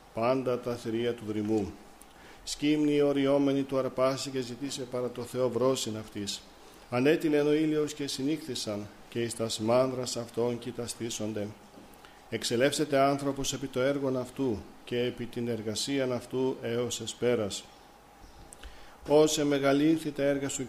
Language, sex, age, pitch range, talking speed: Greek, male, 50-69, 115-140 Hz, 135 wpm